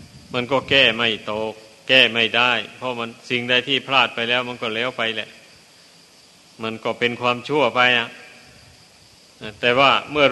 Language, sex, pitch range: Thai, male, 120-135 Hz